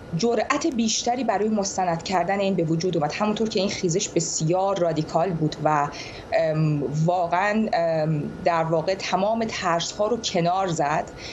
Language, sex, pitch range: Persian, female, 165-225 Hz